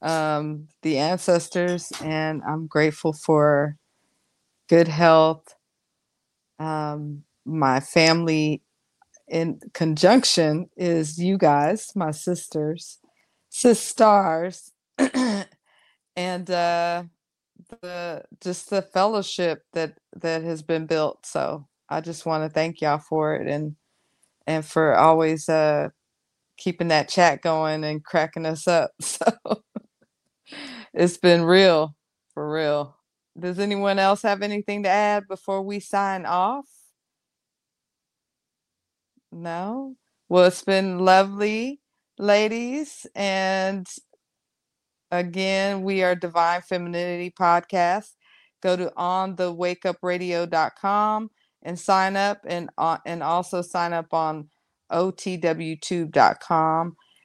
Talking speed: 100 wpm